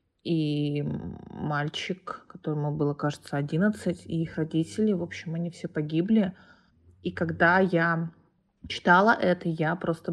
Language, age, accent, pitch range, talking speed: Russian, 20-39, native, 150-185 Hz, 125 wpm